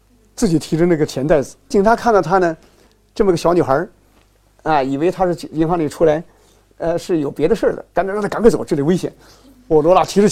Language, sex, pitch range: Chinese, male, 140-190 Hz